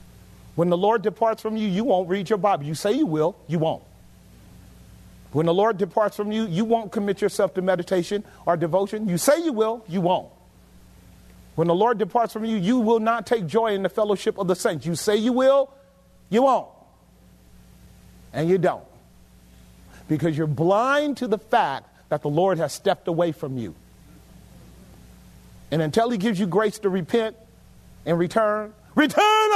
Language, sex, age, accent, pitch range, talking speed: English, male, 40-59, American, 160-220 Hz, 180 wpm